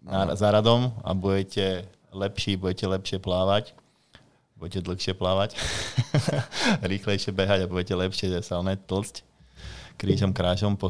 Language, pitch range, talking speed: Slovak, 95-100 Hz, 120 wpm